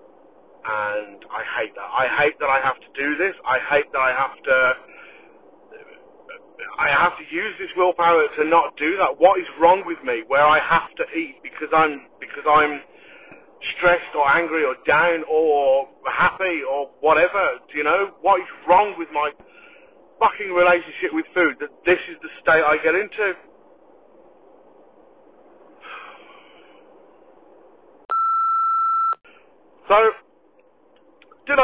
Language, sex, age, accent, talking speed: English, male, 40-59, British, 140 wpm